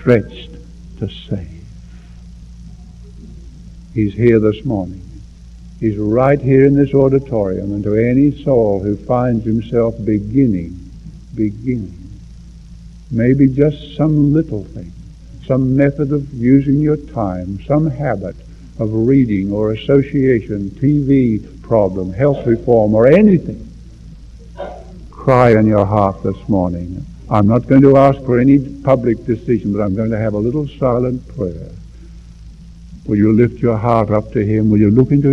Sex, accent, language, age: male, American, English, 60-79